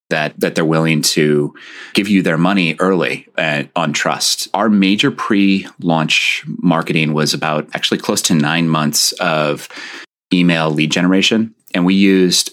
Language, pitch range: English, 75-90 Hz